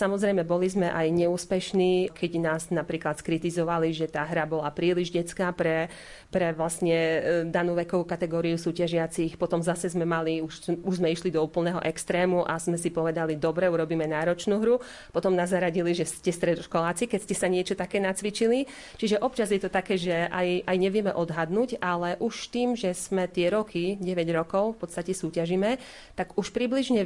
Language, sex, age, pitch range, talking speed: Slovak, female, 30-49, 170-210 Hz, 170 wpm